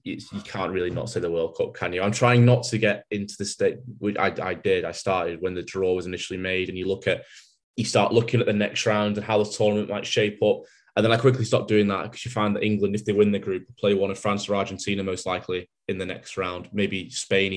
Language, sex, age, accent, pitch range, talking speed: English, male, 20-39, British, 100-115 Hz, 265 wpm